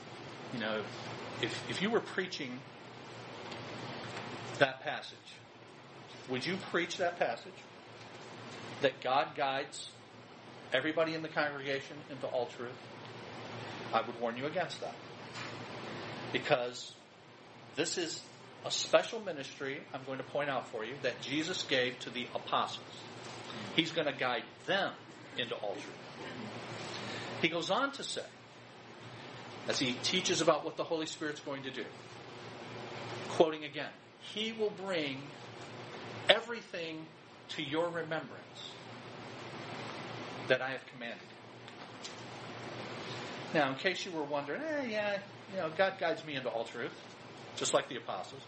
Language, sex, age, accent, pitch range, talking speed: English, male, 40-59, American, 120-165 Hz, 130 wpm